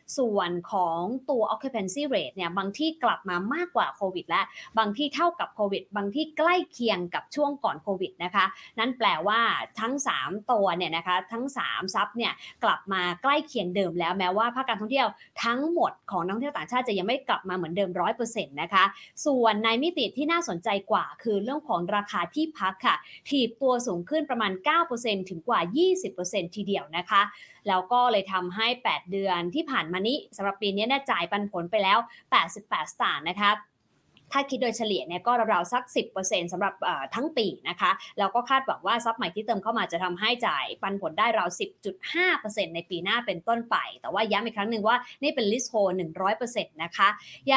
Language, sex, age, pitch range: English, female, 20-39, 190-265 Hz